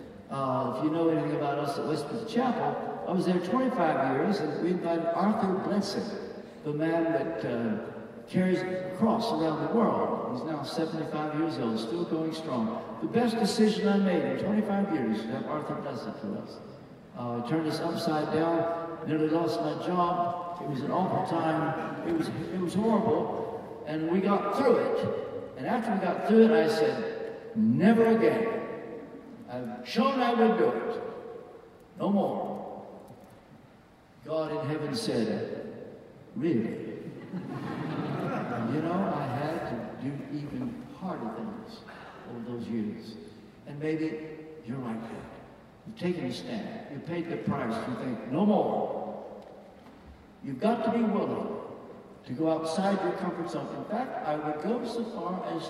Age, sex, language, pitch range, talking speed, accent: 60-79, male, English, 155-220 Hz, 160 wpm, American